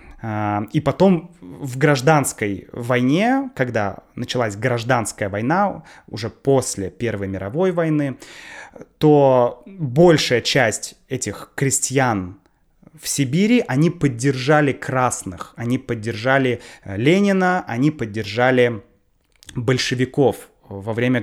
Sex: male